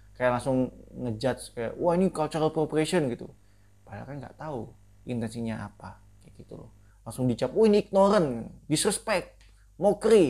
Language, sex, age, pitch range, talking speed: Indonesian, male, 20-39, 105-150 Hz, 145 wpm